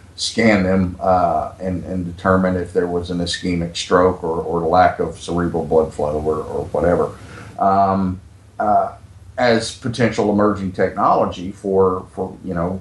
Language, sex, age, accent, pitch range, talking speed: English, male, 50-69, American, 90-100 Hz, 150 wpm